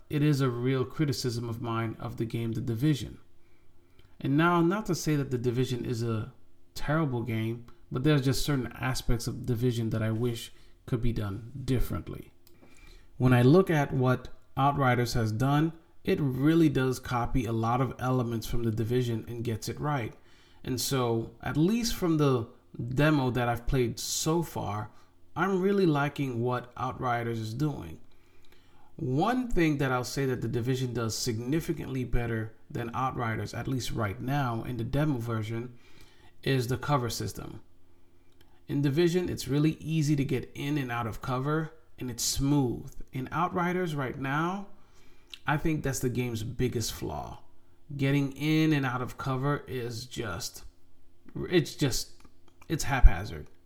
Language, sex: English, male